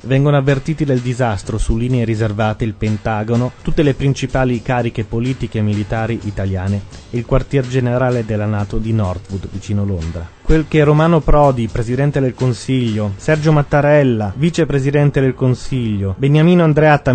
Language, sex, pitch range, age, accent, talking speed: Italian, male, 110-145 Hz, 30-49, native, 145 wpm